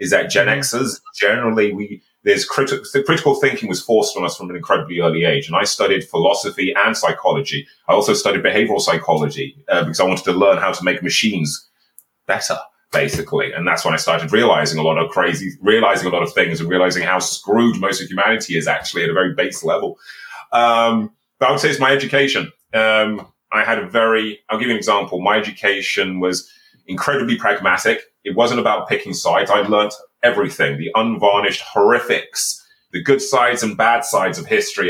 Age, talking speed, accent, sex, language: 30-49, 195 wpm, British, male, English